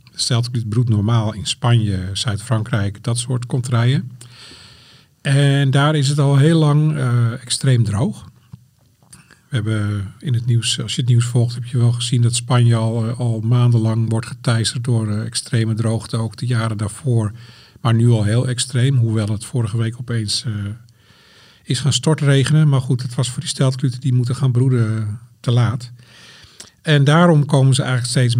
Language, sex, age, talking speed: Dutch, male, 50-69, 170 wpm